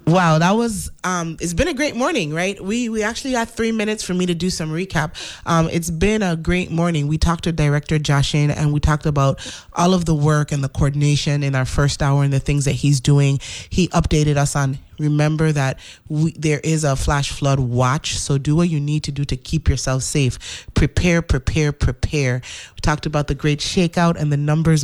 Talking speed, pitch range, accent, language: 215 wpm, 145-180 Hz, American, English